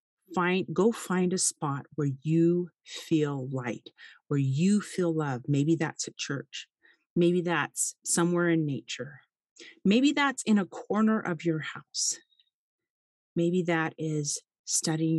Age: 40-59